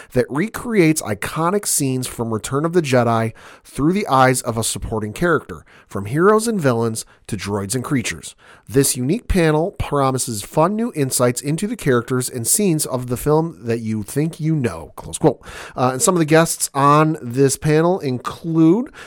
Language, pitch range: English, 110-150 Hz